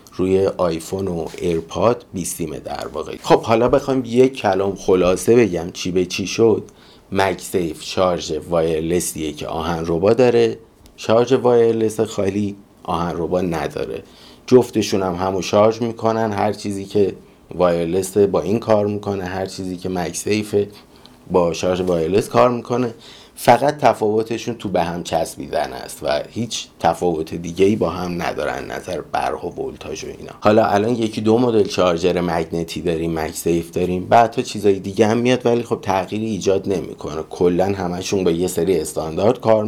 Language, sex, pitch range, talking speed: Persian, male, 90-110 Hz, 150 wpm